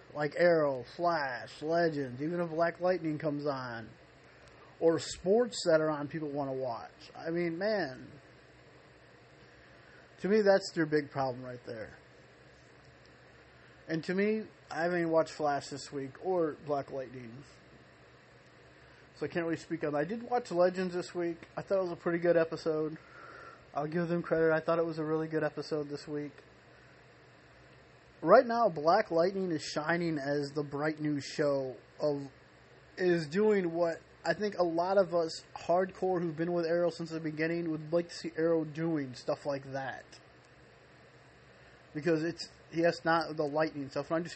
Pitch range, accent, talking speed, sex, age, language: 150-170 Hz, American, 170 wpm, male, 30-49, English